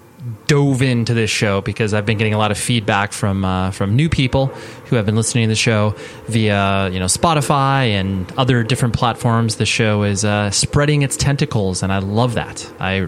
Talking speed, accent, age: 200 wpm, American, 20-39